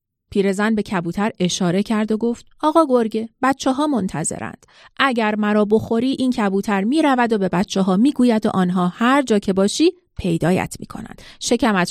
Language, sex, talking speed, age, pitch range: Persian, female, 180 wpm, 30-49, 195-260 Hz